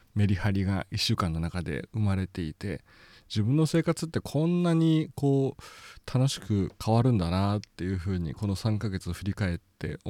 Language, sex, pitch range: Japanese, male, 95-125 Hz